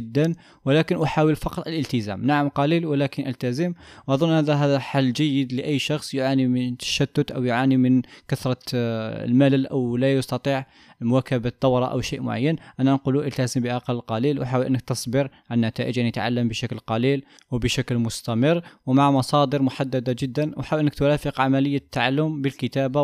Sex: male